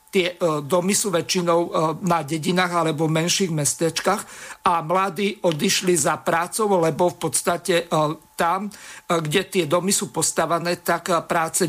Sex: male